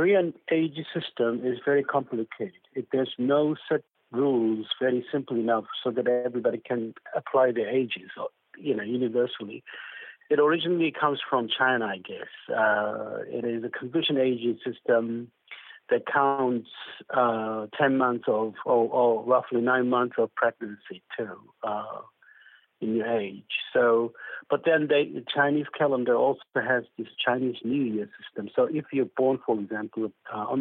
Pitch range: 115-145 Hz